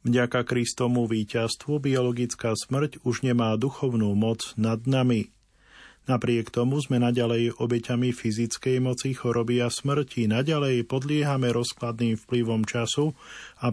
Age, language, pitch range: 40-59, Slovak, 115-130 Hz